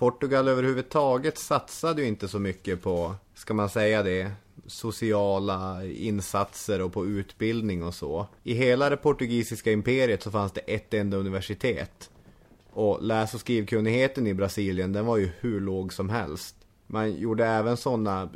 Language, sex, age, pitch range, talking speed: English, male, 30-49, 95-115 Hz, 155 wpm